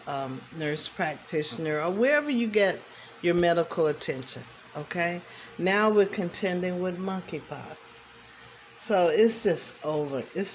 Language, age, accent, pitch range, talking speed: English, 50-69, American, 145-210 Hz, 120 wpm